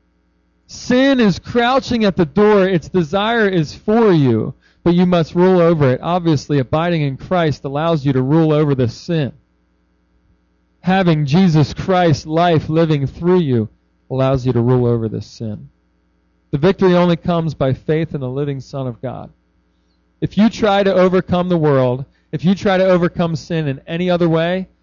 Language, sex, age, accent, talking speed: English, male, 40-59, American, 170 wpm